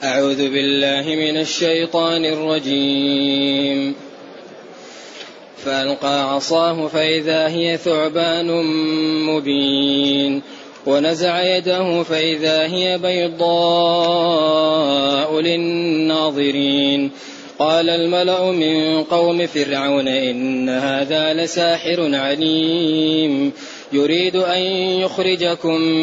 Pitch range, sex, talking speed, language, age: 155-180 Hz, male, 65 wpm, Arabic, 20-39